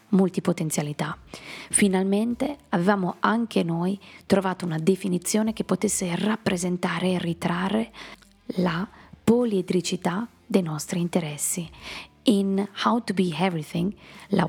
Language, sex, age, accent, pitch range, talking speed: Italian, female, 20-39, native, 175-210 Hz, 100 wpm